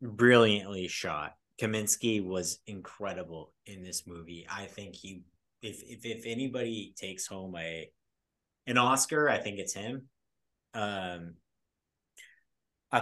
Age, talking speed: 30-49, 120 wpm